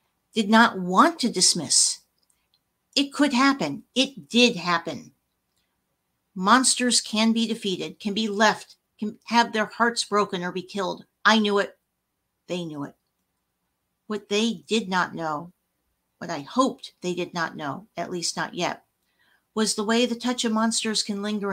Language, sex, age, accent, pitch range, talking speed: English, female, 50-69, American, 185-235 Hz, 160 wpm